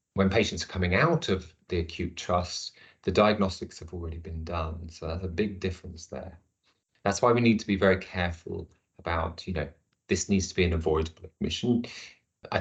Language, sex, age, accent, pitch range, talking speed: English, male, 30-49, British, 90-105 Hz, 190 wpm